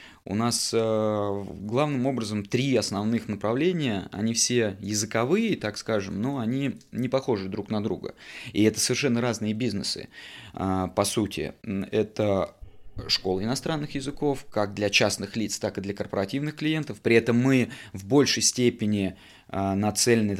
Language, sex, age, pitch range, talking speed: Russian, male, 20-39, 100-130 Hz, 135 wpm